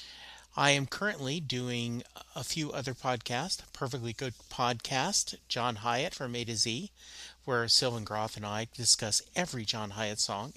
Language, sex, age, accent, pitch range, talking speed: English, male, 40-59, American, 110-140 Hz, 155 wpm